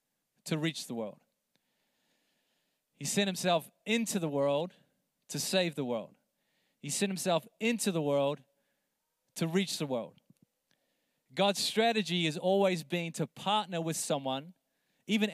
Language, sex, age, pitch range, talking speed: English, male, 20-39, 165-195 Hz, 135 wpm